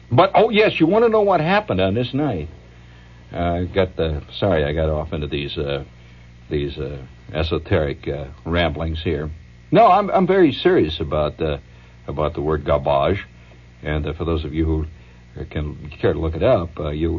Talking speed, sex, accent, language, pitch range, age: 190 wpm, male, American, English, 70-100 Hz, 60-79